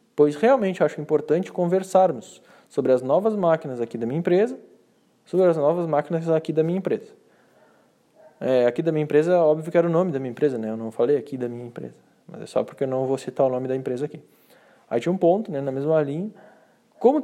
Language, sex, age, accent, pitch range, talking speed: Portuguese, male, 20-39, Brazilian, 135-180 Hz, 220 wpm